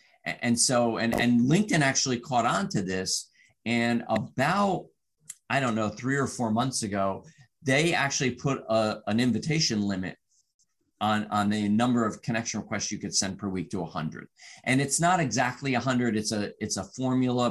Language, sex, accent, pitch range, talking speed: English, male, American, 105-130 Hz, 175 wpm